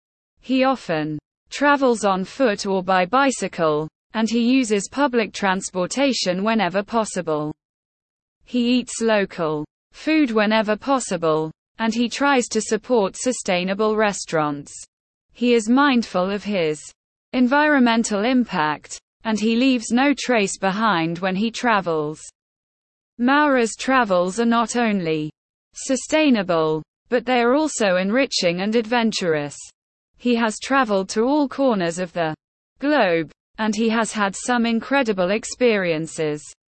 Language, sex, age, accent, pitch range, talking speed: English, female, 20-39, British, 180-250 Hz, 120 wpm